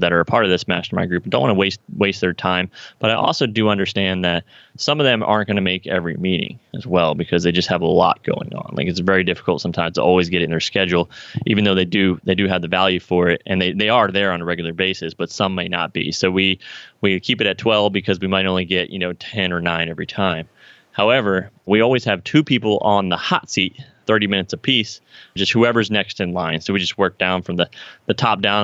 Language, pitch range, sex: English, 90-105 Hz, male